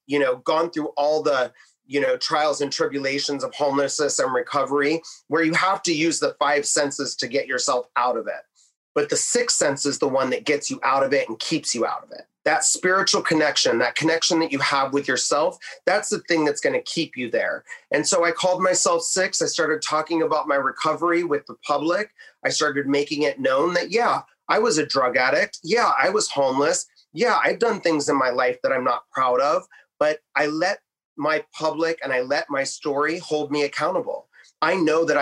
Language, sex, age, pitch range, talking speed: English, male, 30-49, 140-195 Hz, 215 wpm